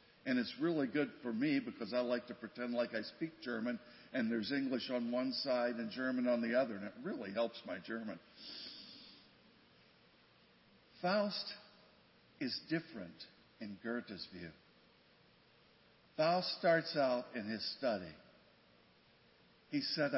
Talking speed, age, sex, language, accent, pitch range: 135 wpm, 60-79, male, English, American, 120-165 Hz